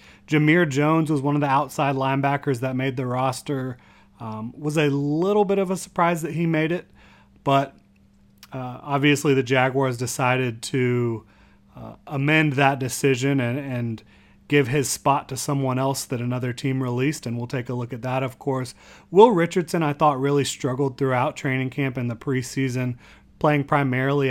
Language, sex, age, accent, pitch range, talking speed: English, male, 30-49, American, 120-140 Hz, 175 wpm